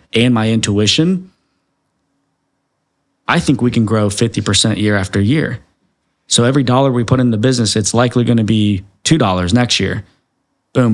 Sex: male